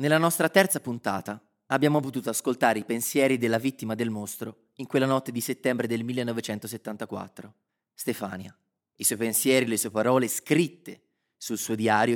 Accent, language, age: native, Italian, 30-49